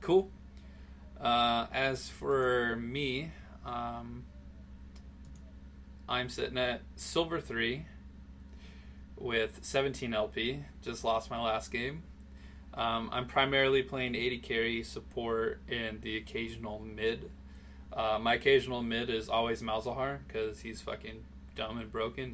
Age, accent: 20-39, American